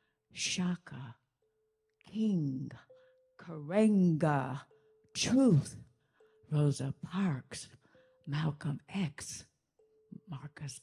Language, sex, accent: English, female, American